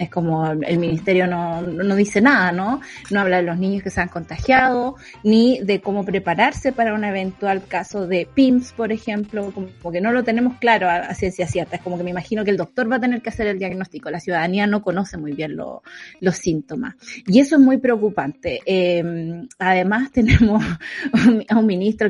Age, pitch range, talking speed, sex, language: 30-49, 185-250 Hz, 200 wpm, female, Spanish